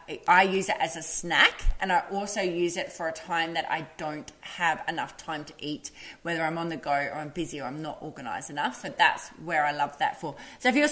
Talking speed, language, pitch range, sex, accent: 245 wpm, English, 170-215 Hz, female, Australian